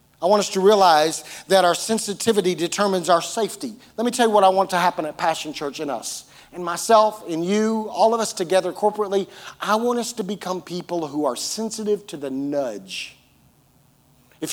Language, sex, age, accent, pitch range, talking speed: English, male, 40-59, American, 160-225 Hz, 195 wpm